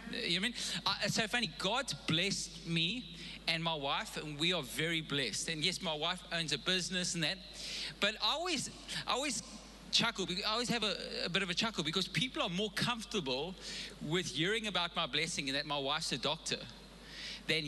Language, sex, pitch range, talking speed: English, male, 175-220 Hz, 205 wpm